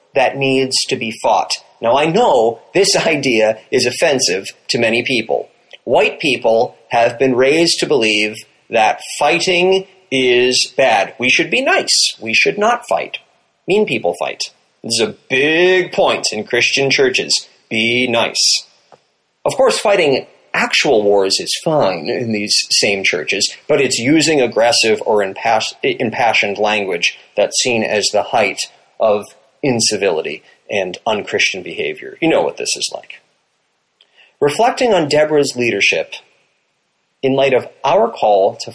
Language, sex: English, male